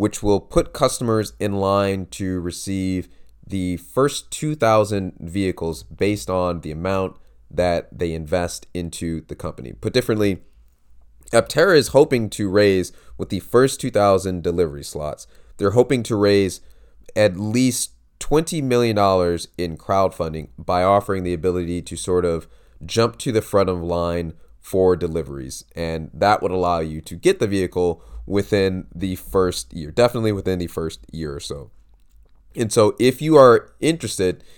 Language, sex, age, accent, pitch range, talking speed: English, male, 30-49, American, 85-100 Hz, 150 wpm